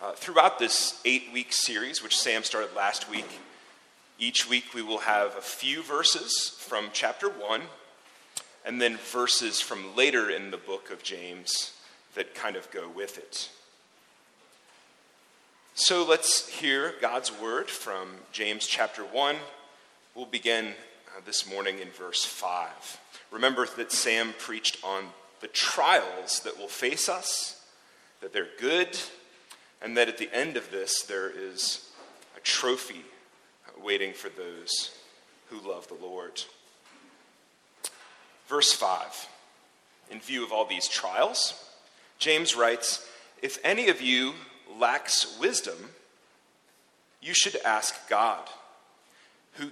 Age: 30-49